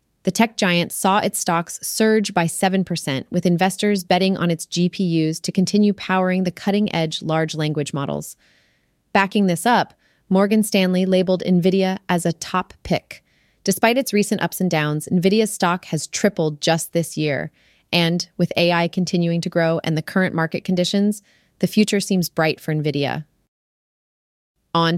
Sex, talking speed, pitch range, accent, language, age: female, 155 wpm, 150-185 Hz, American, English, 30-49